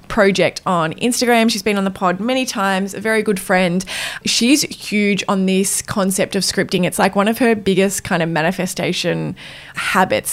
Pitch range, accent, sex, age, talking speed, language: 185-235 Hz, Australian, female, 20-39, 180 wpm, English